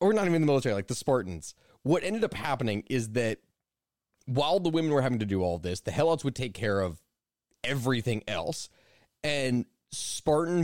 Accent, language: American, English